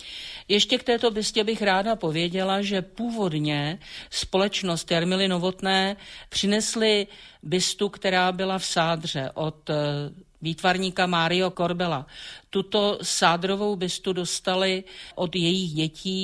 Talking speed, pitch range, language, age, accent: 105 wpm, 160-200 Hz, Czech, 50-69, native